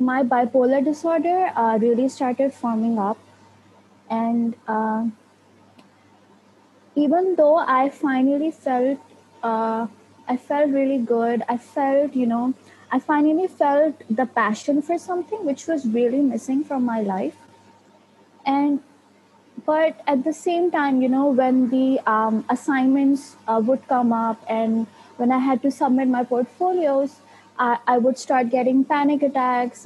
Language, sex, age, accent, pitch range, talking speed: English, female, 20-39, Indian, 235-285 Hz, 135 wpm